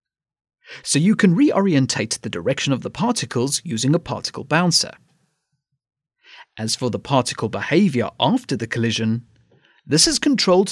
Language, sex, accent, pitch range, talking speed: English, male, British, 125-200 Hz, 135 wpm